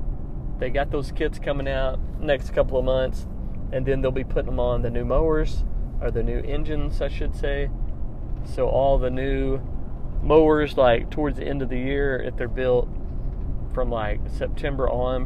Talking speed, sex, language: 180 wpm, male, English